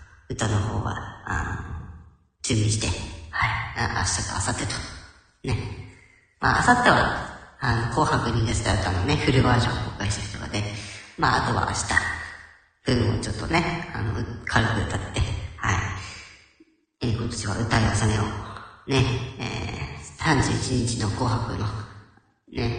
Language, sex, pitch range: Japanese, male, 95-125 Hz